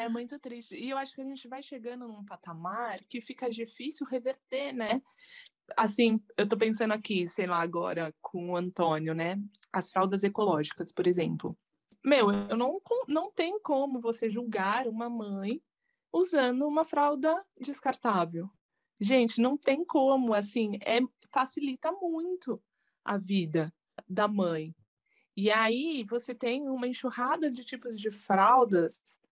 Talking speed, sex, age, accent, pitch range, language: 145 wpm, female, 20-39, Brazilian, 200-265 Hz, Portuguese